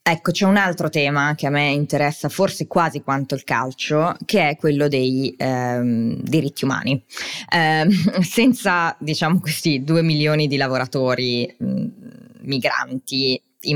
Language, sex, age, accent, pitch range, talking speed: Italian, female, 20-39, native, 130-155 Hz, 140 wpm